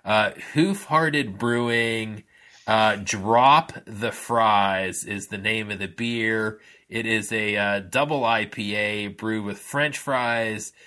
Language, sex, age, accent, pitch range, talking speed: English, male, 30-49, American, 100-120 Hz, 135 wpm